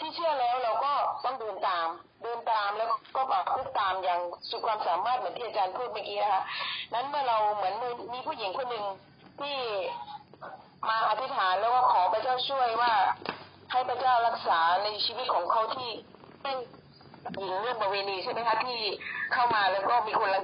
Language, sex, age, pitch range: Thai, female, 20-39, 205-270 Hz